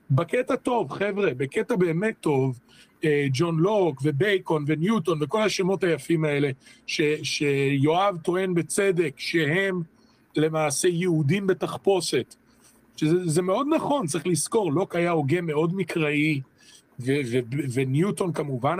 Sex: male